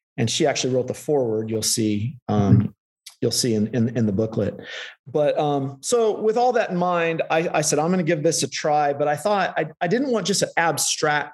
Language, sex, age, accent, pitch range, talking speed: English, male, 40-59, American, 130-170 Hz, 235 wpm